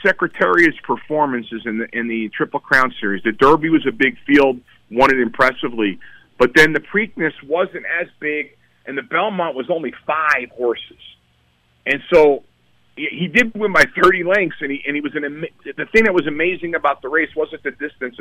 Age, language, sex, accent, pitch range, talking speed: 40-59, English, male, American, 115-190 Hz, 190 wpm